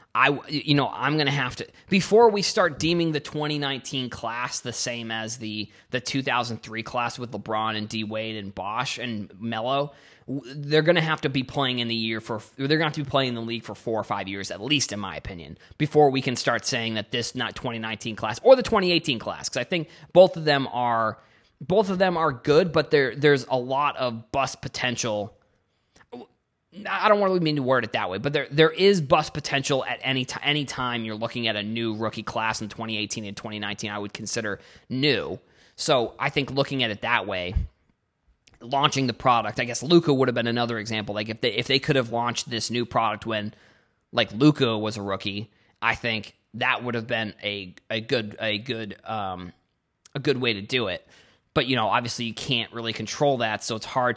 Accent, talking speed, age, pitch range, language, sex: American, 220 wpm, 20-39, 110-140 Hz, English, male